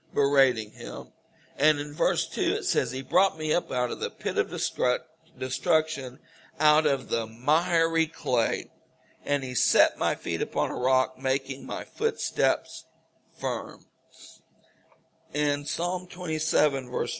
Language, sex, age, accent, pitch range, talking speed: English, male, 60-79, American, 130-160 Hz, 135 wpm